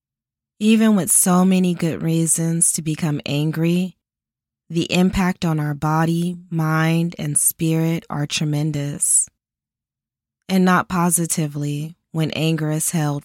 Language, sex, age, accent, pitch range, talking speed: English, female, 20-39, American, 150-175 Hz, 120 wpm